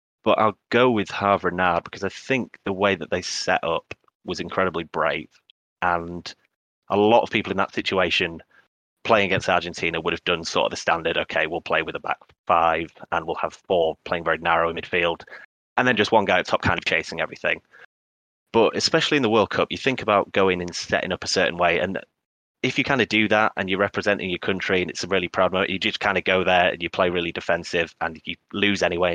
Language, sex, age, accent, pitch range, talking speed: English, male, 30-49, British, 85-100 Hz, 235 wpm